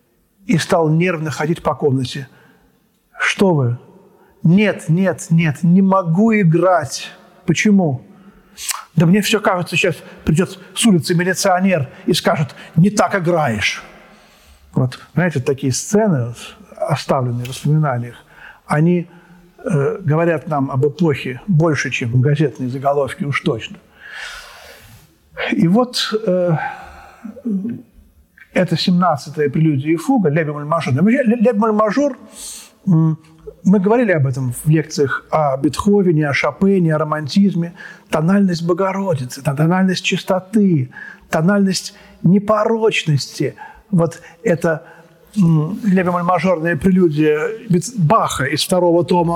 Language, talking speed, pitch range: Russian, 105 wpm, 150-195 Hz